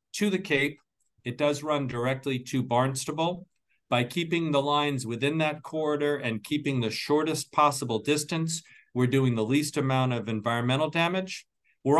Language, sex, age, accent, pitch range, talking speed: English, male, 50-69, American, 125-155 Hz, 155 wpm